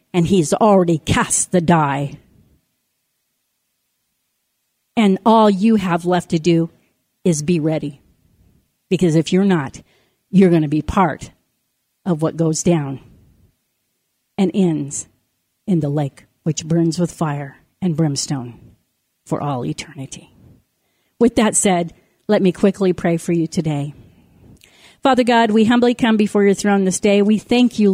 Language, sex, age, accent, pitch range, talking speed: English, female, 40-59, American, 165-210 Hz, 140 wpm